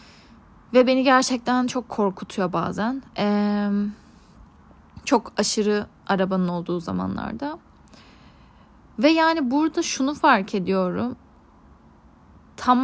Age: 10-29